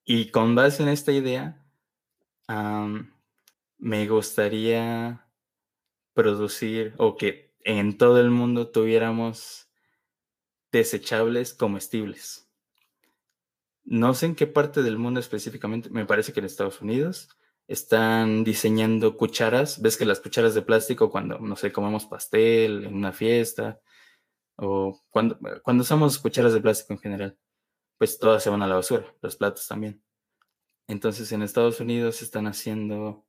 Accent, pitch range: Mexican, 105-125 Hz